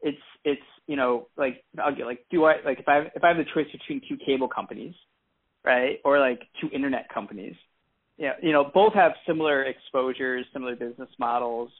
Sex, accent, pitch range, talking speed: male, American, 125-145 Hz, 205 wpm